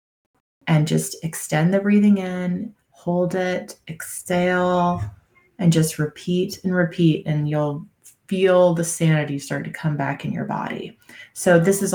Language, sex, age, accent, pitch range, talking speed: English, female, 20-39, American, 150-185 Hz, 145 wpm